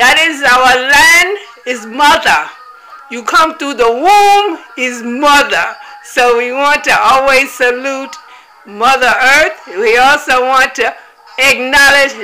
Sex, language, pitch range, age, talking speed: female, English, 245-295 Hz, 60-79, 125 wpm